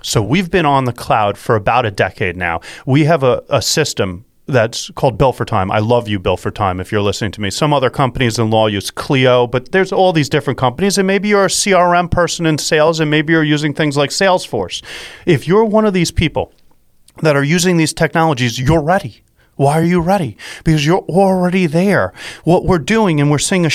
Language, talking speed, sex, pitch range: English, 220 wpm, male, 110-160 Hz